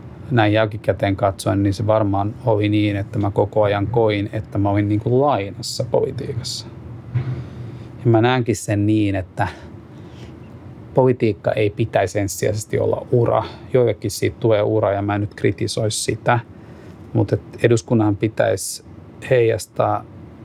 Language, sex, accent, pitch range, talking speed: Finnish, male, native, 105-115 Hz, 130 wpm